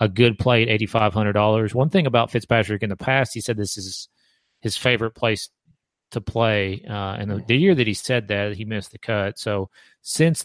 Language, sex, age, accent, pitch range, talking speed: English, male, 40-59, American, 105-125 Hz, 205 wpm